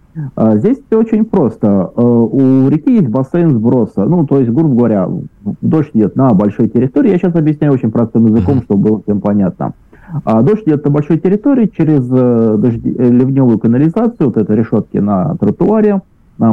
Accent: native